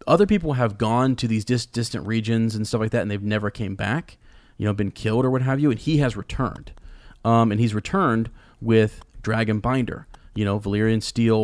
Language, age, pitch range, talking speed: English, 30-49, 105-125 Hz, 215 wpm